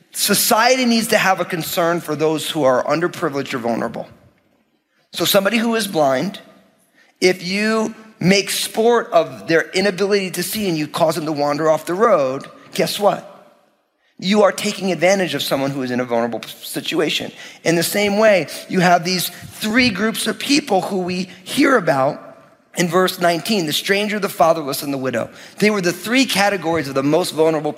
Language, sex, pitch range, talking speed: English, male, 155-215 Hz, 180 wpm